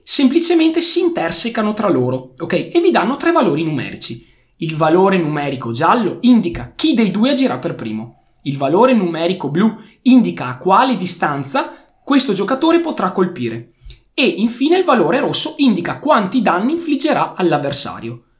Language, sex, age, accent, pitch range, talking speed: Italian, male, 20-39, native, 150-250 Hz, 145 wpm